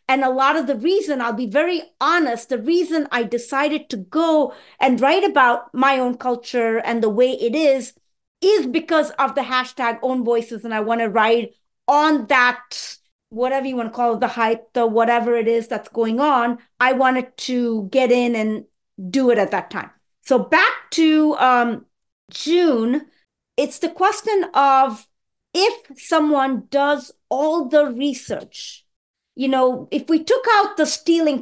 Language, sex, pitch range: English, female, 245-305 Hz